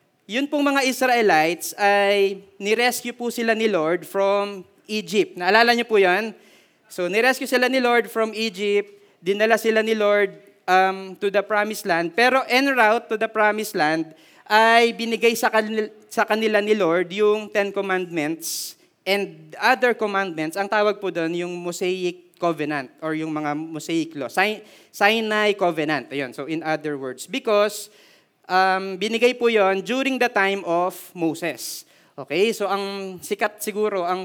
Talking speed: 155 wpm